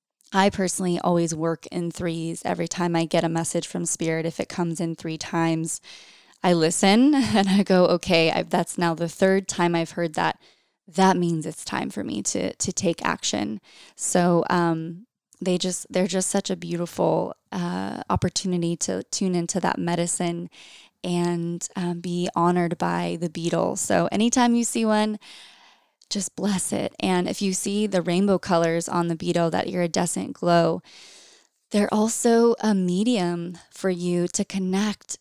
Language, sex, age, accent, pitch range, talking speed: English, female, 20-39, American, 170-195 Hz, 170 wpm